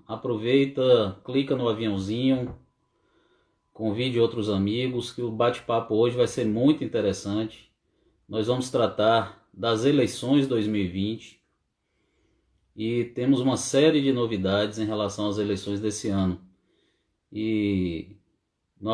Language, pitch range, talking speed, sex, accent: Portuguese, 105-125 Hz, 110 wpm, male, Brazilian